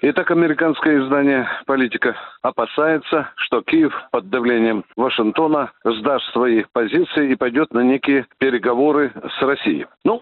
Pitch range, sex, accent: 130-180 Hz, male, native